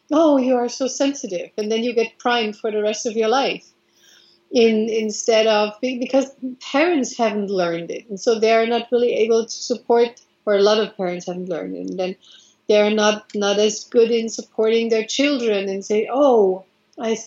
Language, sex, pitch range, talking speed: English, female, 210-245 Hz, 200 wpm